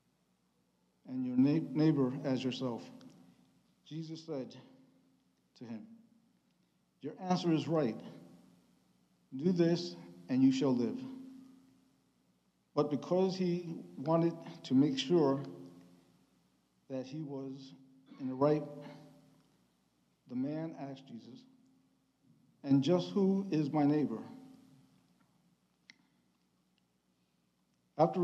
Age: 50-69